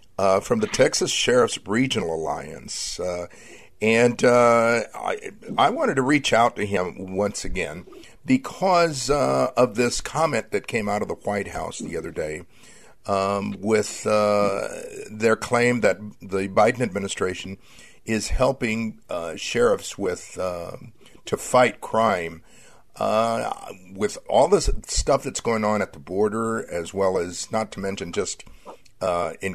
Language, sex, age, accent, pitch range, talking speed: English, male, 50-69, American, 95-125 Hz, 150 wpm